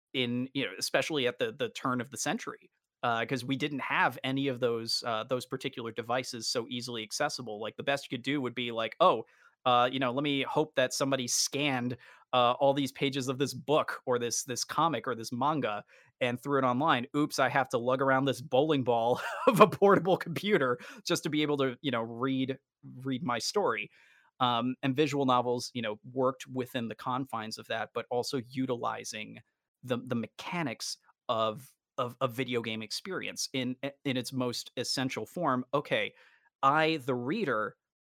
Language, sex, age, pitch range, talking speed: English, male, 20-39, 120-140 Hz, 190 wpm